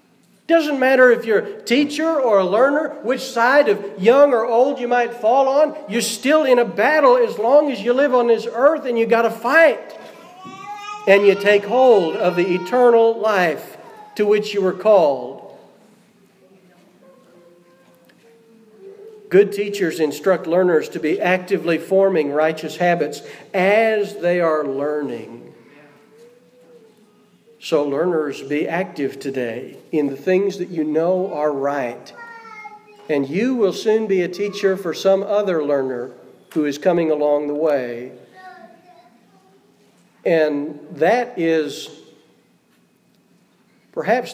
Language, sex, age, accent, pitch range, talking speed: English, male, 50-69, American, 165-240 Hz, 135 wpm